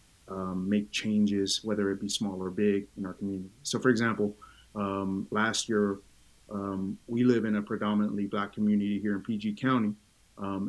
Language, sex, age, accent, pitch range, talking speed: English, male, 30-49, American, 100-115 Hz, 175 wpm